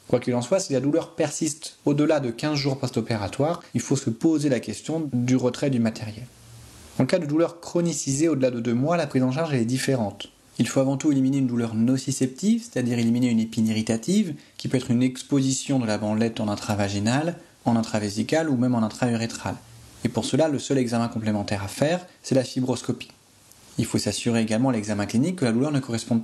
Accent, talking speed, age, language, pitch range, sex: French, 210 wpm, 30-49, French, 115-135 Hz, male